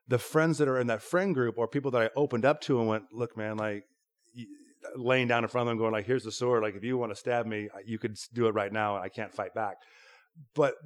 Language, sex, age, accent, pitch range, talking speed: English, male, 30-49, American, 105-130 Hz, 275 wpm